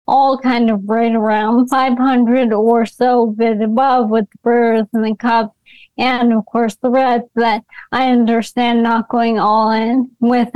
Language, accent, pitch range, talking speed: English, American, 230-255 Hz, 170 wpm